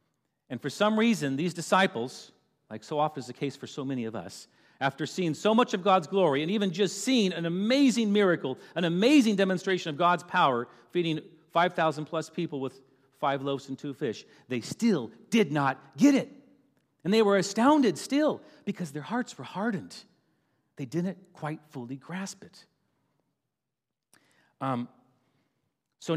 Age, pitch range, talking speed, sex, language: 40-59, 135-190 Hz, 165 wpm, male, English